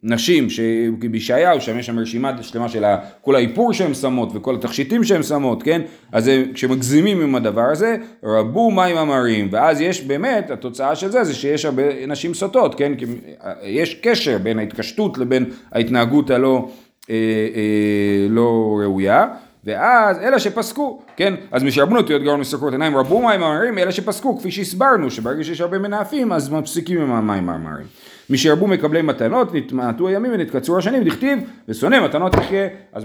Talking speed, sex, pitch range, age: 165 wpm, male, 125-195 Hz, 40-59